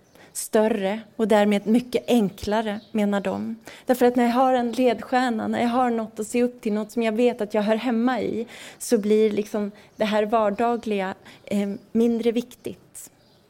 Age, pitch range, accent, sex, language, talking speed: 30-49, 205-240 Hz, Swedish, female, English, 180 wpm